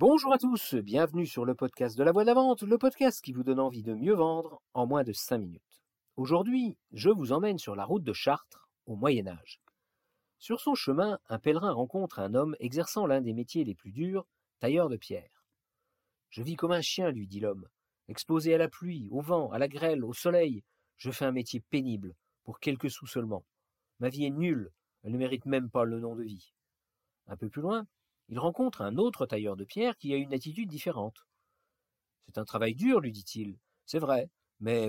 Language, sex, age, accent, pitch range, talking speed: French, male, 50-69, French, 110-175 Hz, 210 wpm